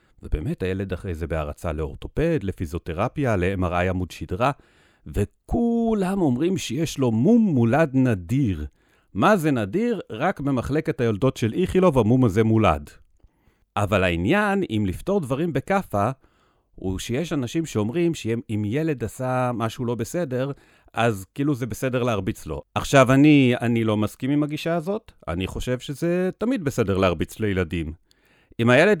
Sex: male